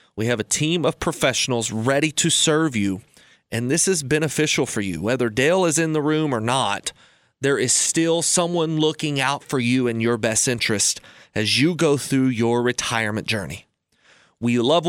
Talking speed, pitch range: 180 wpm, 120-155 Hz